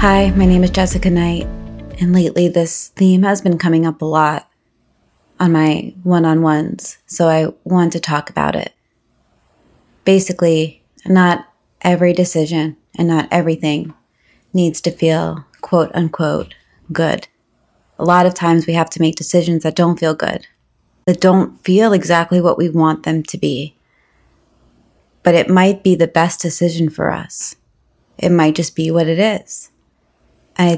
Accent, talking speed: American, 150 wpm